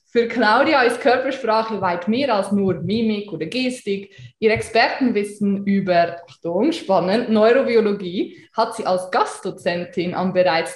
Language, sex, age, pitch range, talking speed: German, female, 20-39, 185-245 Hz, 130 wpm